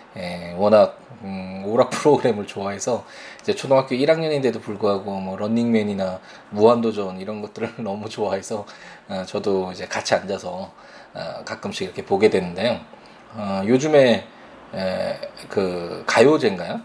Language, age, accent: Korean, 20-39, native